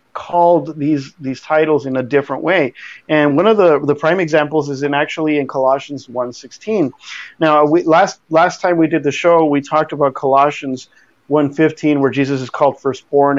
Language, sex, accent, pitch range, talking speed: English, male, American, 135-155 Hz, 180 wpm